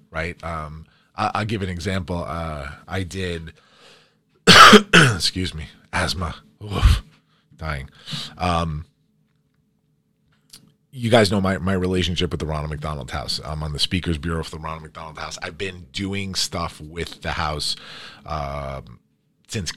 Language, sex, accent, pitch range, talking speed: English, male, American, 80-95 Hz, 140 wpm